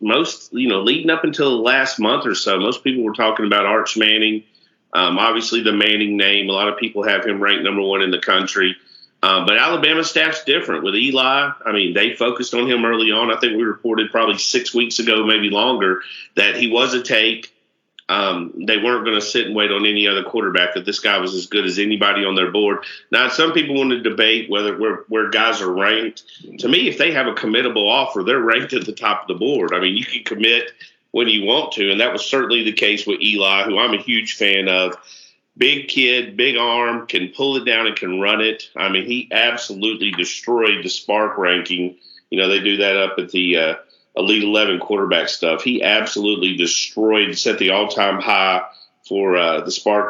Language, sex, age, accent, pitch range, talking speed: English, male, 40-59, American, 100-115 Hz, 220 wpm